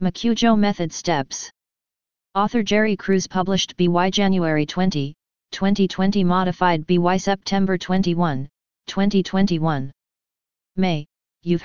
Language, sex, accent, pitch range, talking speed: English, female, American, 165-195 Hz, 95 wpm